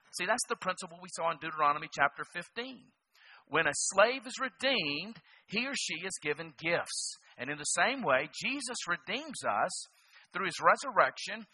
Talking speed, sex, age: 165 wpm, male, 50-69